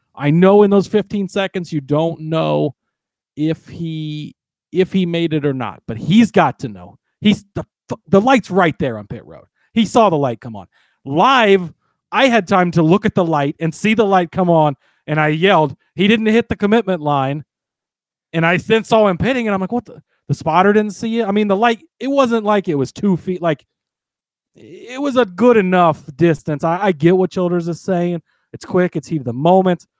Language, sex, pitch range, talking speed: English, male, 155-200 Hz, 215 wpm